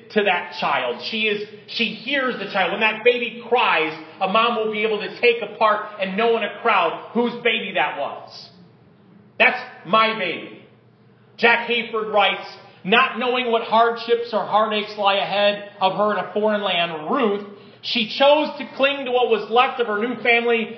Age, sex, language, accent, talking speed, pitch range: 40-59, male, English, American, 180 wpm, 210-245 Hz